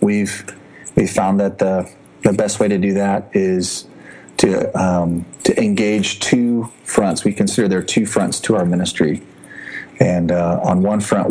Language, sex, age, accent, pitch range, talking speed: English, male, 30-49, American, 95-115 Hz, 170 wpm